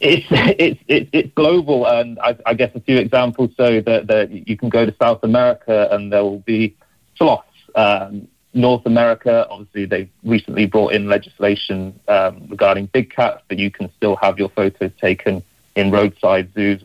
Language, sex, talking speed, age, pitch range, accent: English, male, 180 wpm, 40-59, 100-115 Hz, British